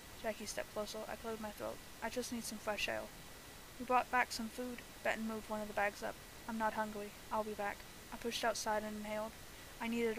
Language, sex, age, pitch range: English, female, 20-39, 215-230 Hz